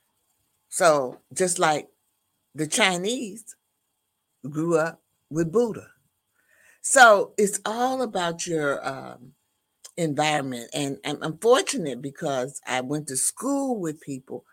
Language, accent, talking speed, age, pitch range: English, American, 110 wpm, 60-79, 130-180 Hz